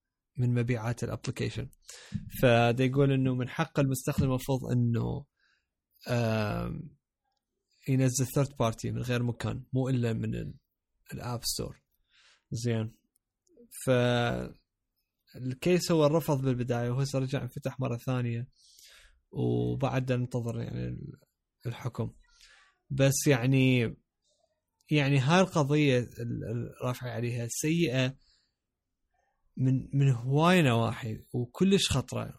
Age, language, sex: 20-39, Arabic, male